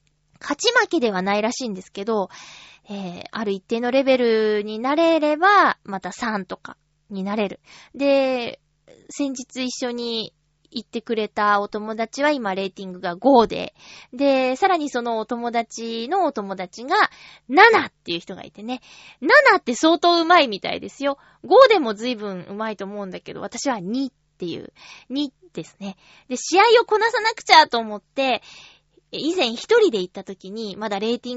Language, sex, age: Japanese, female, 20-39